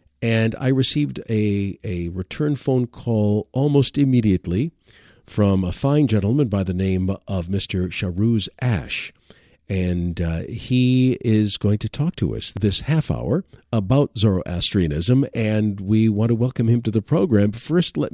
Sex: male